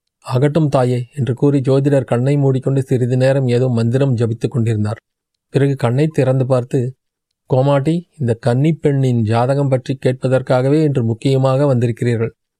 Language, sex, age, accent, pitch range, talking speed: Tamil, male, 30-49, native, 120-140 Hz, 130 wpm